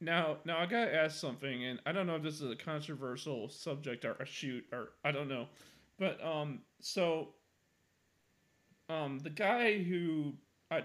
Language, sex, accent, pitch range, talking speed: English, male, American, 130-160 Hz, 170 wpm